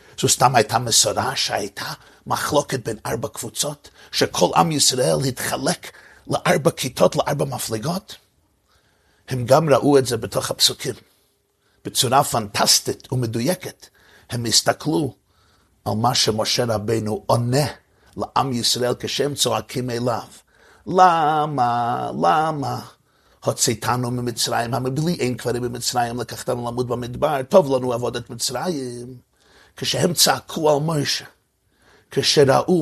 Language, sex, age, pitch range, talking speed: Hebrew, male, 50-69, 115-145 Hz, 110 wpm